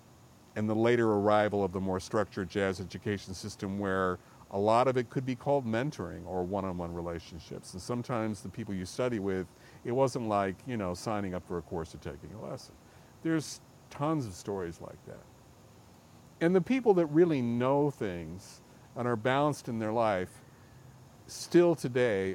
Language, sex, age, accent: English, male, 50-69, American